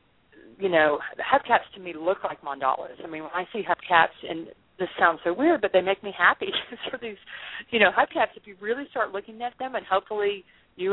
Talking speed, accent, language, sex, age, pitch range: 220 wpm, American, English, female, 40-59, 160-200 Hz